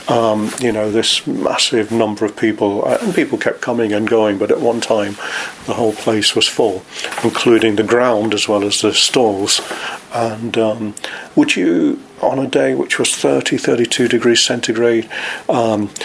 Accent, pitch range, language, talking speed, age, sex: British, 110-120 Hz, English, 170 wpm, 40-59, male